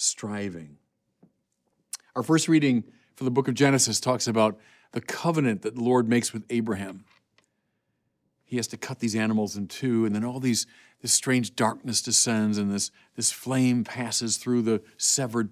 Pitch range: 110-150 Hz